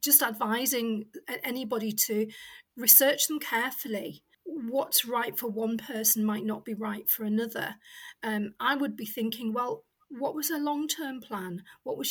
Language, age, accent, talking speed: English, 40-59, British, 155 wpm